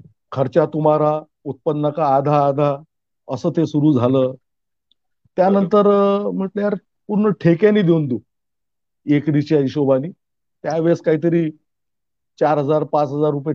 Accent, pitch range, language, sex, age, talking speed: native, 135-185 Hz, Marathi, male, 50-69, 105 wpm